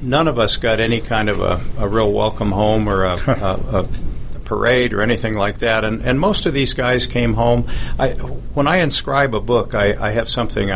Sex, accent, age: male, American, 50-69